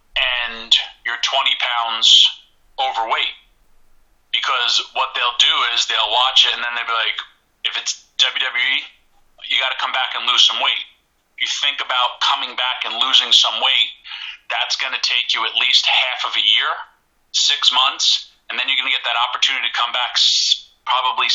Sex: male